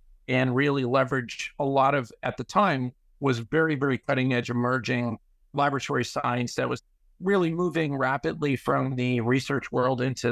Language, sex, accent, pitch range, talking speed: English, male, American, 120-140 Hz, 150 wpm